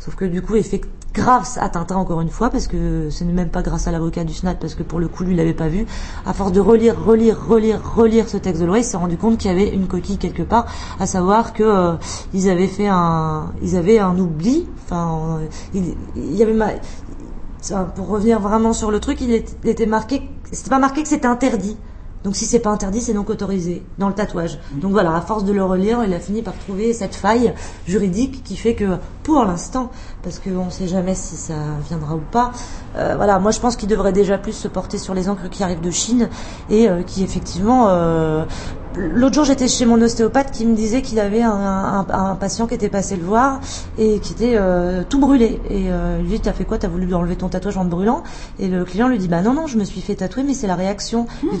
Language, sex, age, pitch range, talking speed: French, female, 30-49, 180-225 Hz, 245 wpm